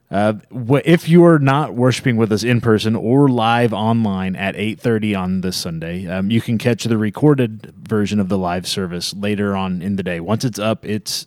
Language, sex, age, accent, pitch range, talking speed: English, male, 30-49, American, 100-130 Hz, 200 wpm